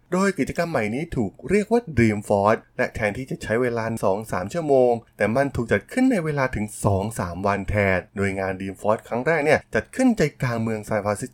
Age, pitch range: 20-39, 105-160 Hz